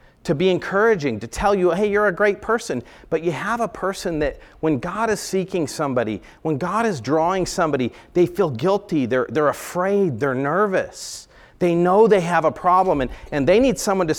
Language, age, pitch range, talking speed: English, 40-59, 115-180 Hz, 200 wpm